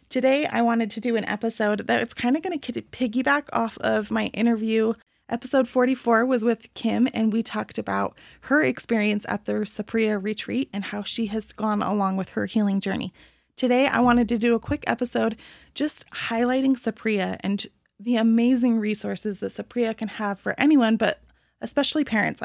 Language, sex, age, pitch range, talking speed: English, female, 20-39, 210-240 Hz, 175 wpm